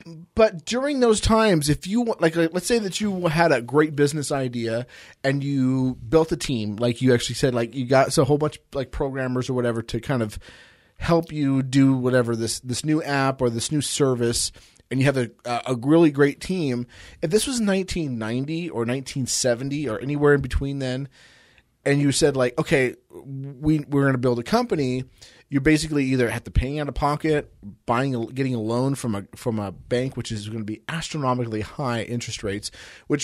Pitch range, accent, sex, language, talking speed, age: 120-150 Hz, American, male, English, 205 wpm, 30-49